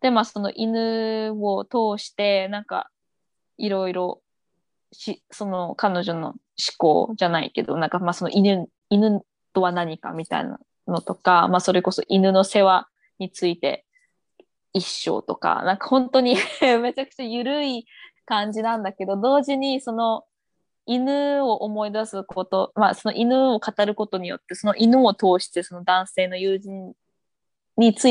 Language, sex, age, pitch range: Japanese, female, 20-39, 185-245 Hz